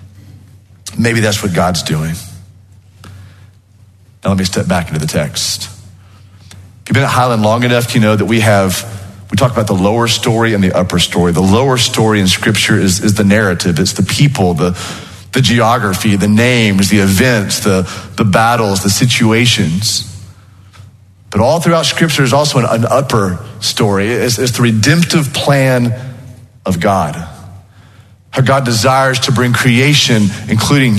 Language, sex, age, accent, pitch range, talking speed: English, male, 40-59, American, 100-145 Hz, 160 wpm